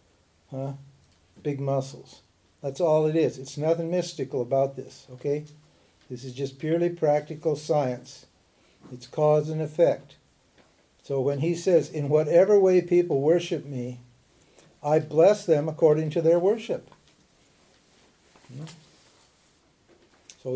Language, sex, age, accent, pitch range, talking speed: English, male, 60-79, American, 140-170 Hz, 115 wpm